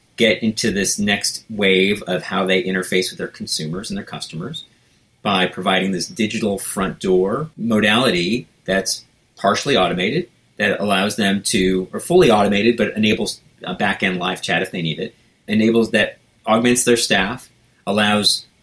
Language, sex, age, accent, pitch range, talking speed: English, male, 30-49, American, 95-115 Hz, 160 wpm